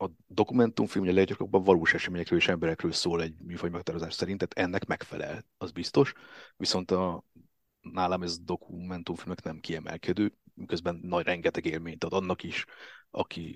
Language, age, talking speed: Hungarian, 30-49, 145 wpm